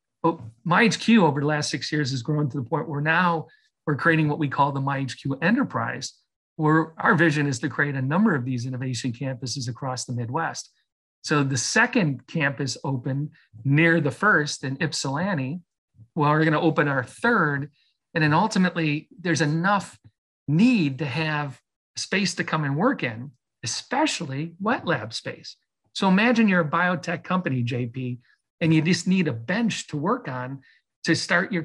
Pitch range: 140-180 Hz